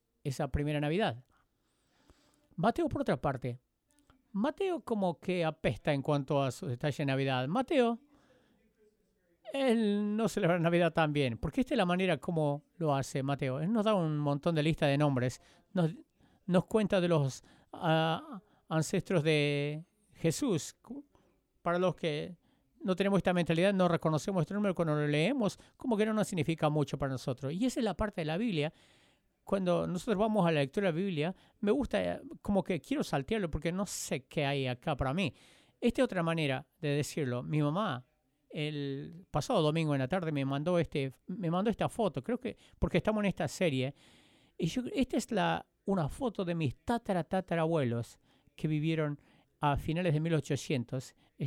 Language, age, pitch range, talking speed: English, 50-69, 145-195 Hz, 175 wpm